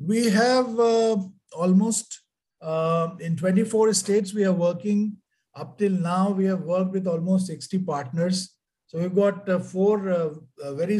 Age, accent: 50-69, Indian